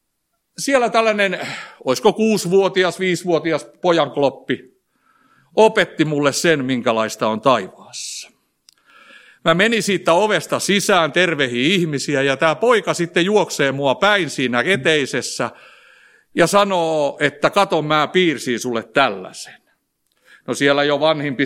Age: 60-79